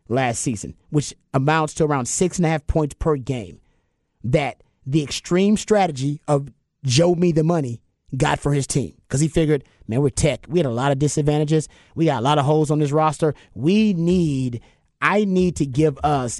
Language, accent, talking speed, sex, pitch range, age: English, American, 200 wpm, male, 125-165 Hz, 30-49